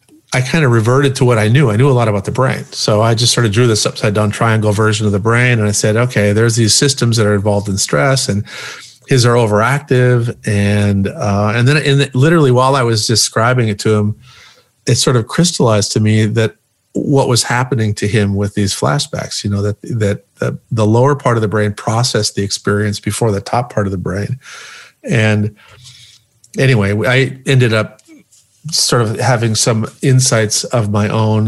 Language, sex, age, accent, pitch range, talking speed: English, male, 50-69, American, 105-130 Hz, 205 wpm